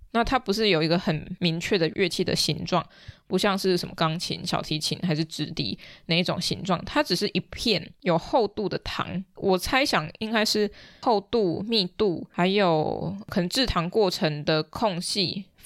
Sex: female